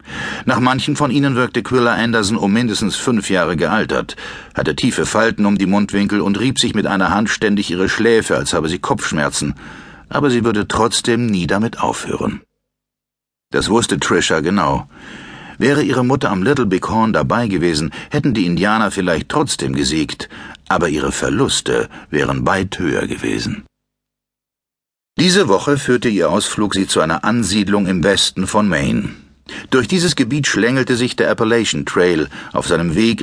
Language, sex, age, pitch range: German, male, 60-79, 95-125 Hz